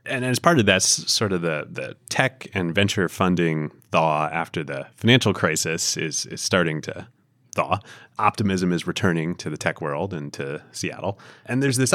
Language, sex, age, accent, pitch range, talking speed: English, male, 30-49, American, 85-110 Hz, 180 wpm